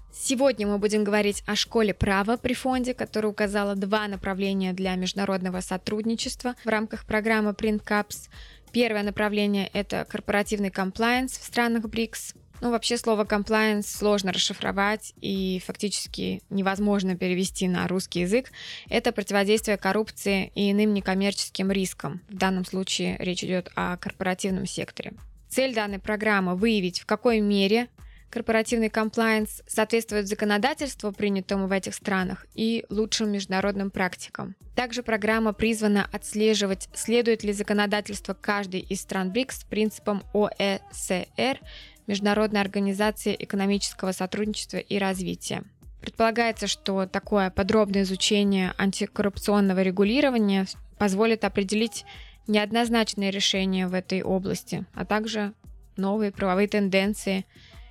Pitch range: 195-220 Hz